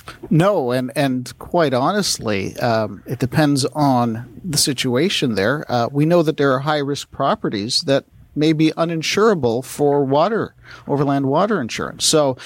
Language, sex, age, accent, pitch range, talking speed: English, male, 50-69, American, 125-155 Hz, 145 wpm